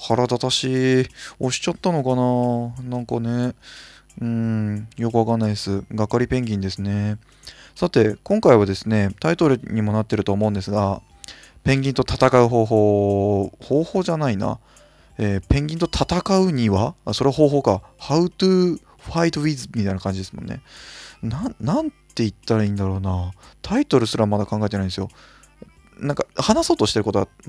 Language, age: Japanese, 20-39